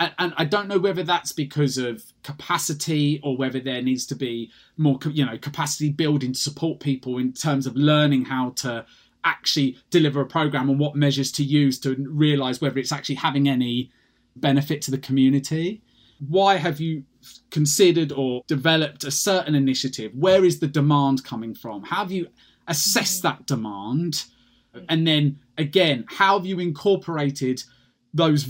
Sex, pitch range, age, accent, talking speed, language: male, 135-170 Hz, 20-39, British, 165 wpm, English